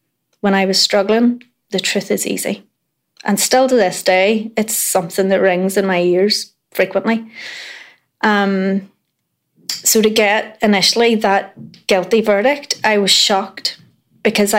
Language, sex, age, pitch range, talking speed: English, female, 30-49, 190-230 Hz, 135 wpm